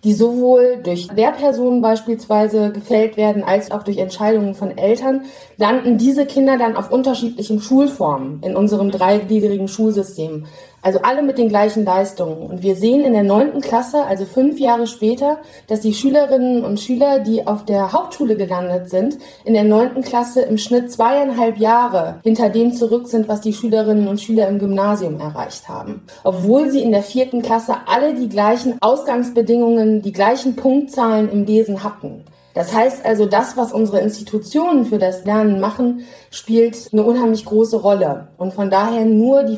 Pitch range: 200-245 Hz